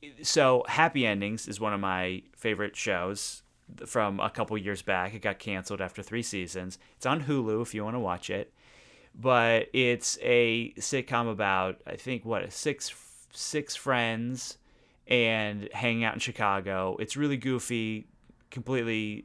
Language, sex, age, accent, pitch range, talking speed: English, male, 30-49, American, 100-125 Hz, 155 wpm